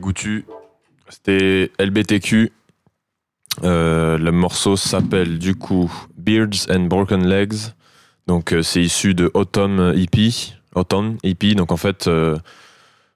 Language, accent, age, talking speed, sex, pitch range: French, French, 20-39, 120 wpm, male, 85-100 Hz